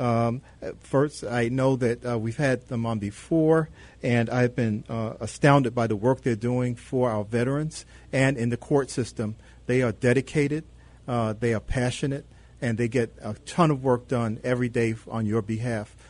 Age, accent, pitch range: 40-59, American, 115-145 Hz